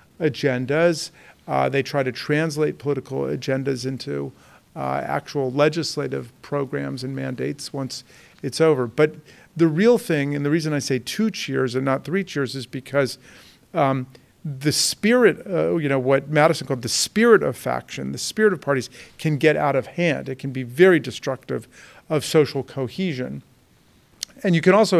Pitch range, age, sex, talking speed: 130-155 Hz, 50-69, male, 165 wpm